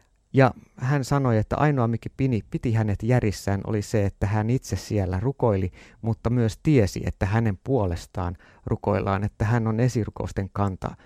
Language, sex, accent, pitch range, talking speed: Finnish, male, native, 105-130 Hz, 150 wpm